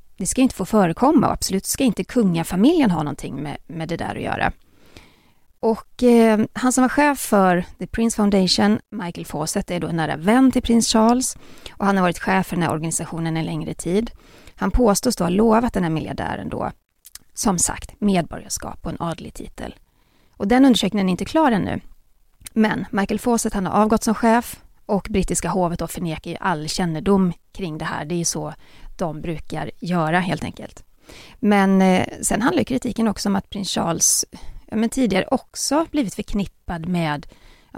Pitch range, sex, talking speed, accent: 175-240 Hz, female, 190 wpm, native